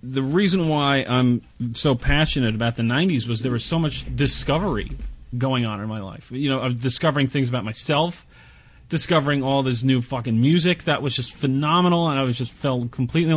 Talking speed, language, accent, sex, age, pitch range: 195 wpm, English, American, male, 30-49, 125-165 Hz